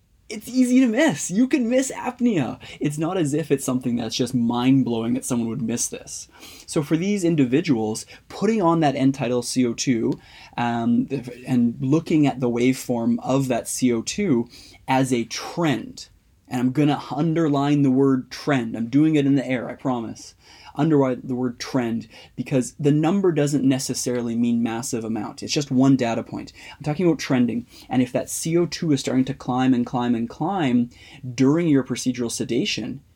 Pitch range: 120-150 Hz